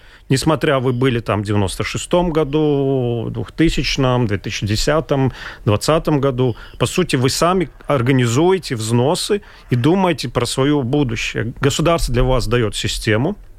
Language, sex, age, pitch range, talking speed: Russian, male, 40-59, 115-150 Hz, 130 wpm